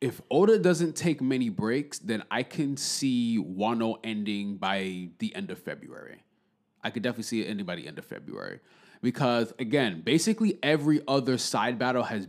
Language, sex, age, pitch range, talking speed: English, male, 20-39, 105-150 Hz, 175 wpm